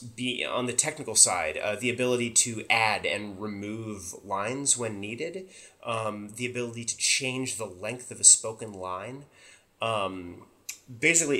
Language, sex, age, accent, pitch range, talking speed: English, male, 30-49, American, 100-130 Hz, 145 wpm